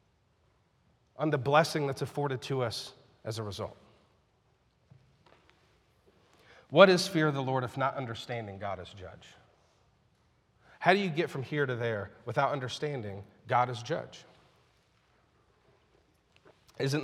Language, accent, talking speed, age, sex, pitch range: English, American, 125 wpm, 40-59, male, 125-155 Hz